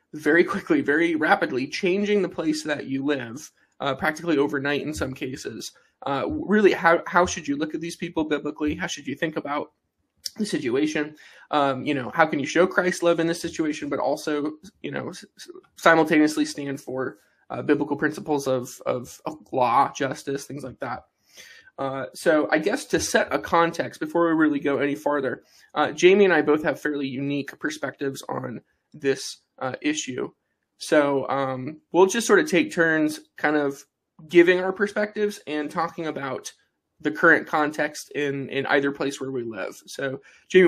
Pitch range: 140-170 Hz